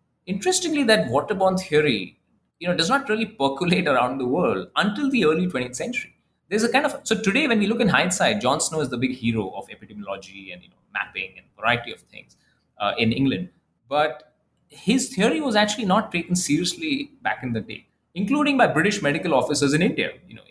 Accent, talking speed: Indian, 200 wpm